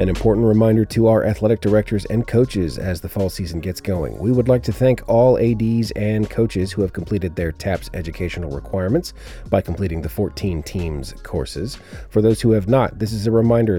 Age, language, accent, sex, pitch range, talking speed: 30-49, English, American, male, 85-110 Hz, 200 wpm